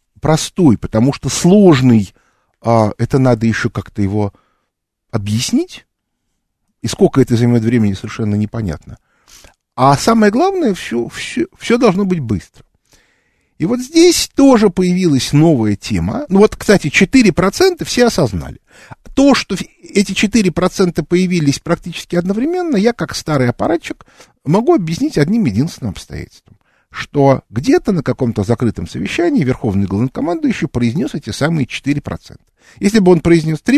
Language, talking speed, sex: Russian, 125 wpm, male